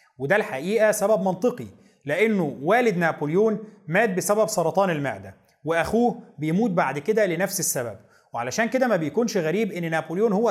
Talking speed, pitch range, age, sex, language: 145 wpm, 150-210 Hz, 30-49, male, Arabic